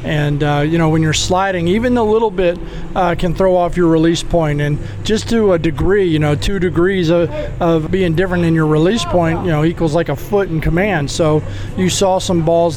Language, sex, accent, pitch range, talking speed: English, male, American, 150-170 Hz, 225 wpm